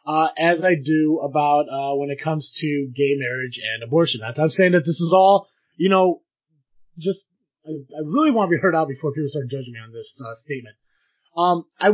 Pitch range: 140-175 Hz